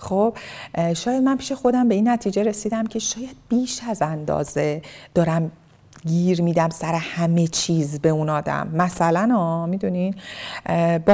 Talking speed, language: 140 wpm, Persian